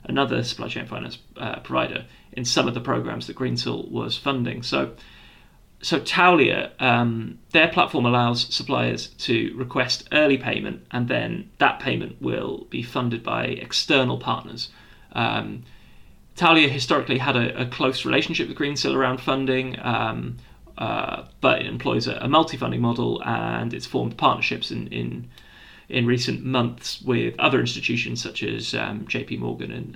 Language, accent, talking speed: English, British, 150 wpm